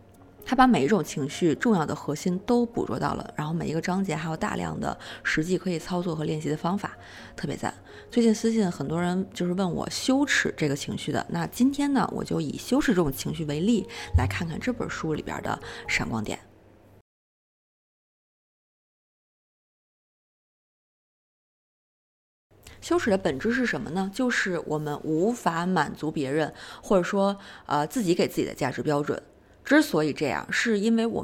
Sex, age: female, 20-39